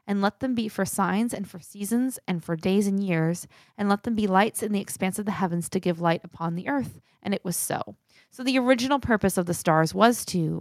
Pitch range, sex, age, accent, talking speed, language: 170-210 Hz, female, 20-39, American, 250 wpm, English